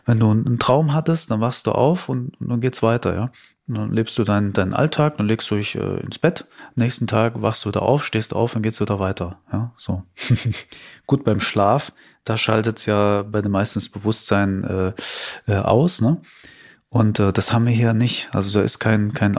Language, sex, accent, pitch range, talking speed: German, male, German, 100-120 Hz, 225 wpm